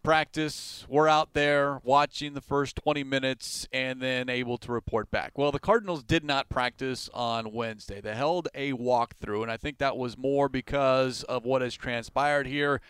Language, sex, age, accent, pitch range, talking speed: English, male, 30-49, American, 125-145 Hz, 180 wpm